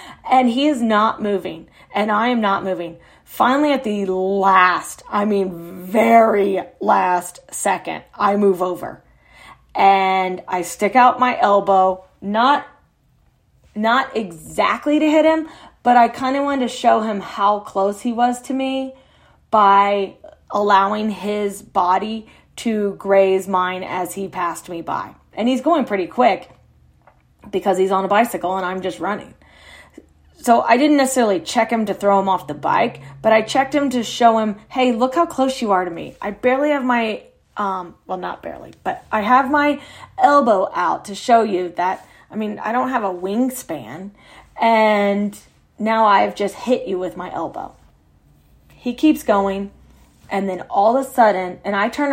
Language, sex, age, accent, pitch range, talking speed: English, female, 30-49, American, 190-245 Hz, 170 wpm